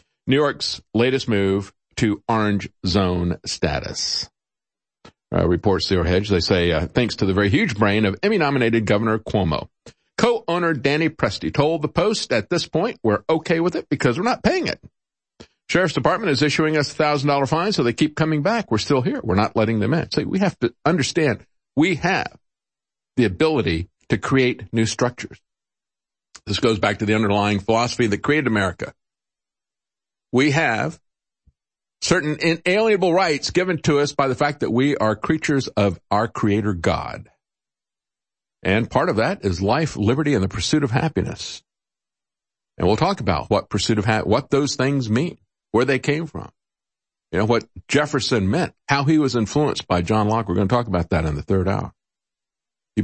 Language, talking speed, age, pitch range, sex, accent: English, 175 wpm, 50-69, 100-150 Hz, male, American